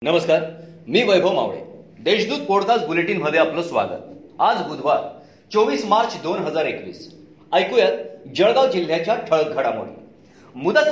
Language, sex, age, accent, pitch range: Marathi, male, 40-59, native, 175-240 Hz